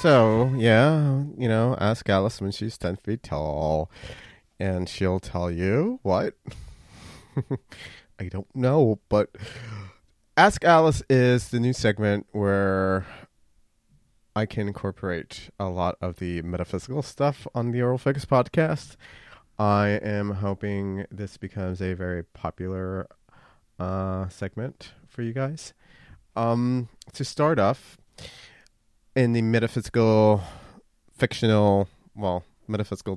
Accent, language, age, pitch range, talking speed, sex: American, English, 30-49, 95-120 Hz, 115 wpm, male